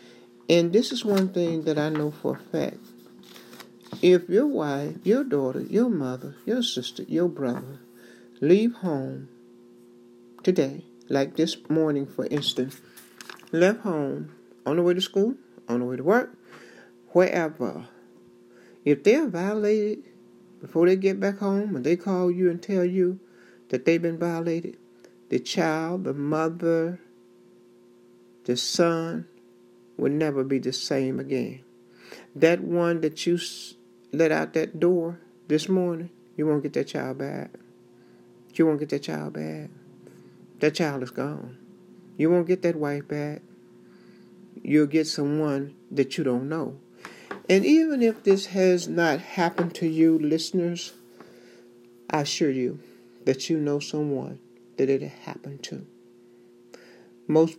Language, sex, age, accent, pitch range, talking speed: English, male, 60-79, American, 120-175 Hz, 140 wpm